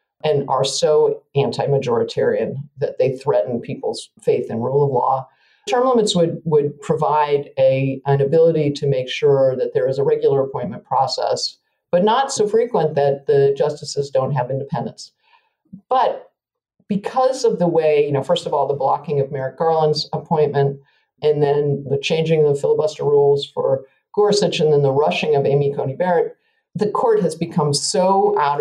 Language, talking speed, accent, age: English, 170 wpm, American, 50-69